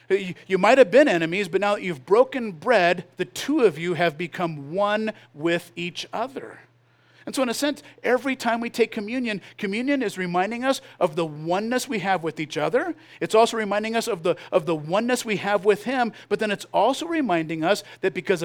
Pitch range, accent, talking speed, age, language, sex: 175-240 Hz, American, 210 wpm, 50-69, English, male